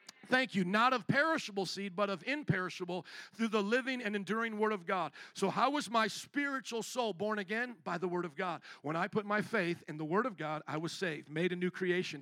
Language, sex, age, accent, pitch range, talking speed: English, male, 50-69, American, 180-230 Hz, 230 wpm